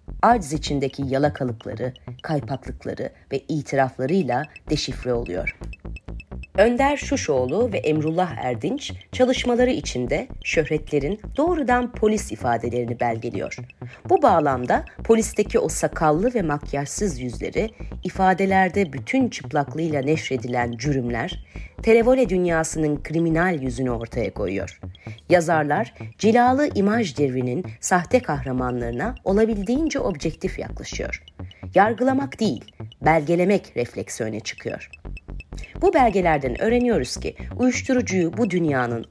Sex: female